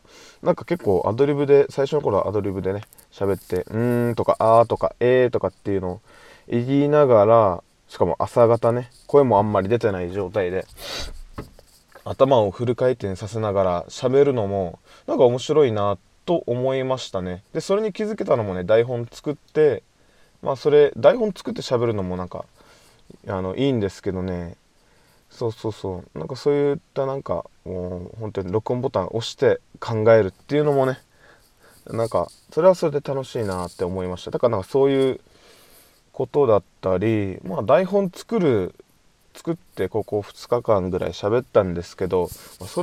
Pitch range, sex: 95-140 Hz, male